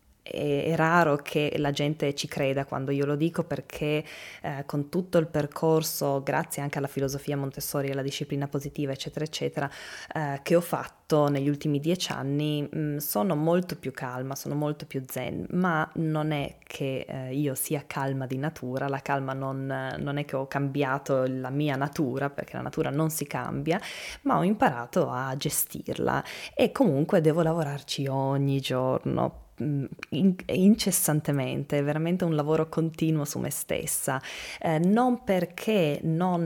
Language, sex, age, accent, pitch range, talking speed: Italian, female, 20-39, native, 140-170 Hz, 155 wpm